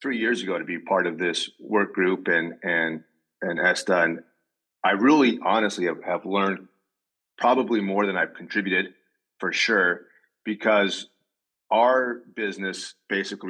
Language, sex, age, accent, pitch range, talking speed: English, male, 30-49, American, 85-100 Hz, 140 wpm